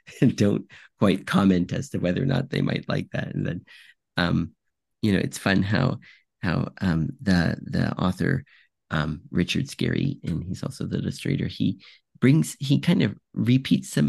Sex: male